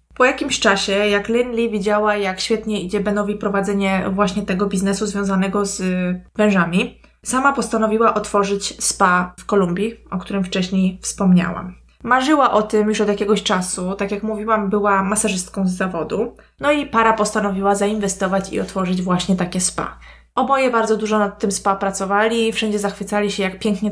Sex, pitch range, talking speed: female, 195-225 Hz, 160 wpm